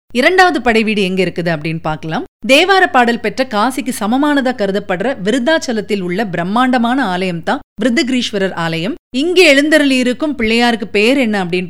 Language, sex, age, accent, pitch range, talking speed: Tamil, female, 30-49, native, 190-275 Hz, 135 wpm